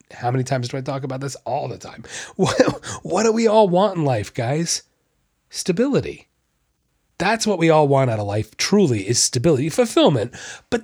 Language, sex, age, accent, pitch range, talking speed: English, male, 30-49, American, 125-170 Hz, 185 wpm